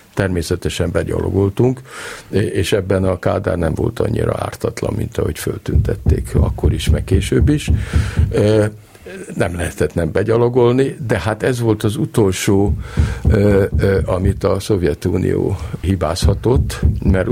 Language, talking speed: Hungarian, 115 wpm